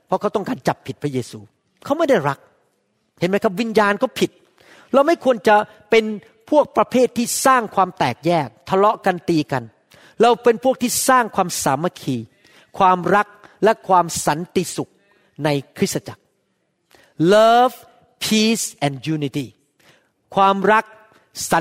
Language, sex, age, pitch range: Thai, male, 40-59, 150-215 Hz